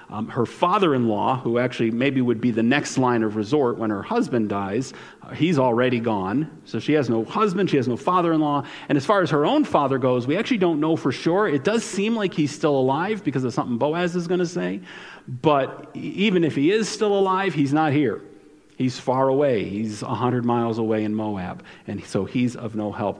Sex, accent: male, American